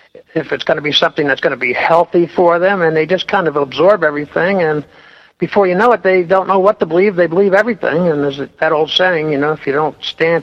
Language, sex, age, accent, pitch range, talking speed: English, male, 60-79, American, 145-190 Hz, 260 wpm